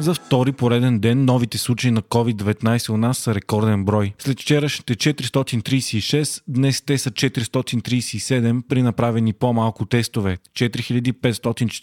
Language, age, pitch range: Bulgarian, 20-39, 115-130 Hz